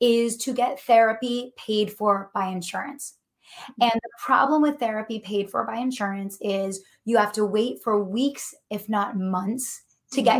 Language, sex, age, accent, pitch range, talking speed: English, female, 20-39, American, 200-260 Hz, 165 wpm